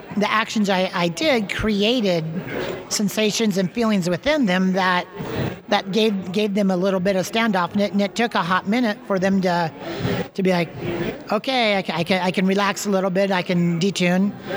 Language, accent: English, American